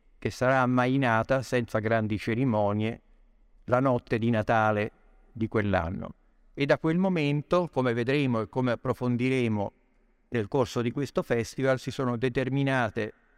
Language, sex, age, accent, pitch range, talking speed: Italian, male, 50-69, native, 110-135 Hz, 130 wpm